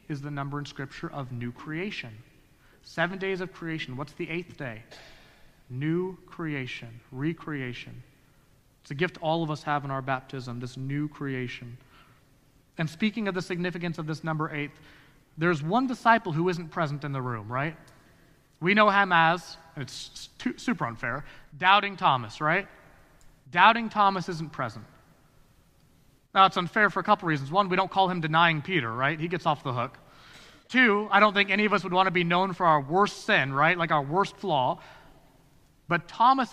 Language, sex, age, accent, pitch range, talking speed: English, male, 30-49, American, 145-190 Hz, 175 wpm